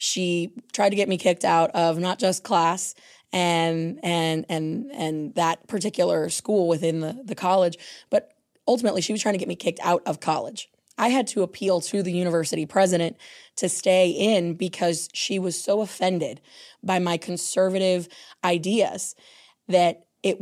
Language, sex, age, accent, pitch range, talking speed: English, female, 20-39, American, 170-195 Hz, 165 wpm